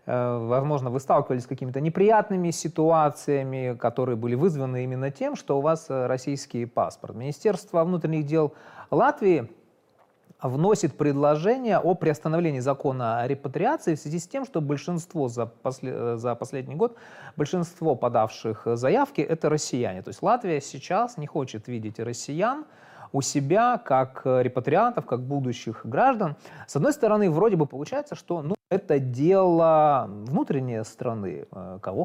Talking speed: 135 wpm